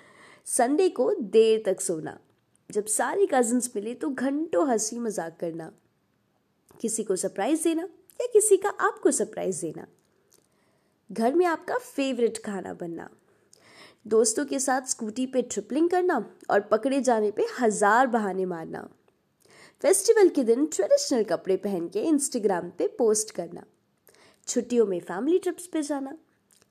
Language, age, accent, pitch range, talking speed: English, 20-39, Indian, 200-320 Hz, 125 wpm